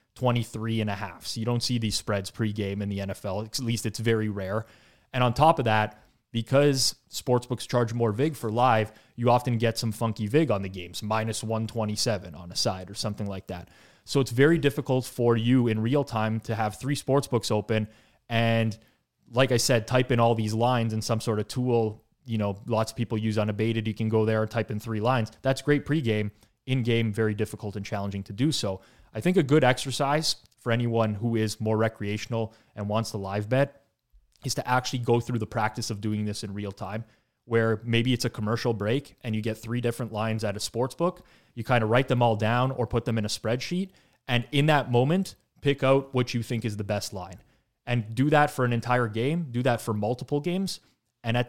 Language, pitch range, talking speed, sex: English, 110-125 Hz, 220 wpm, male